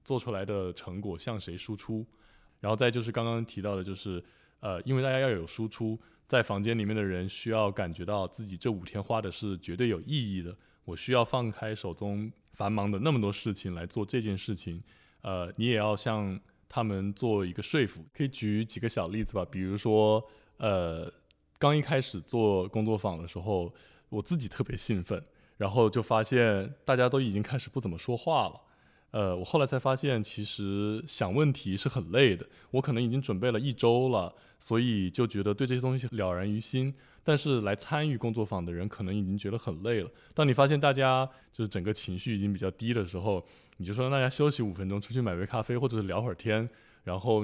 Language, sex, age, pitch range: Chinese, male, 20-39, 95-120 Hz